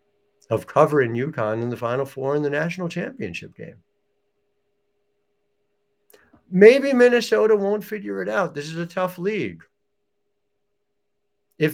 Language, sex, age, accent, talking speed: English, male, 60-79, American, 125 wpm